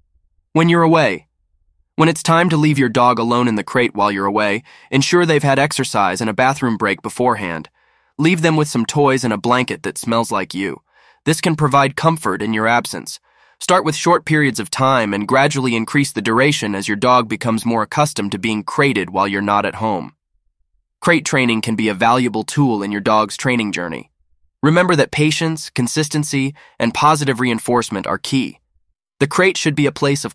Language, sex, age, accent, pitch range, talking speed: English, male, 20-39, American, 105-145 Hz, 195 wpm